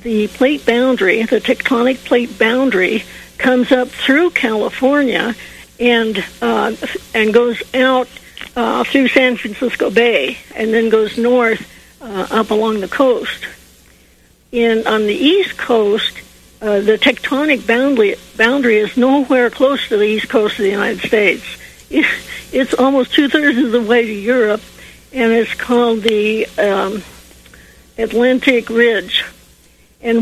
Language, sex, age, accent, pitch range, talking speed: English, female, 60-79, American, 215-255 Hz, 135 wpm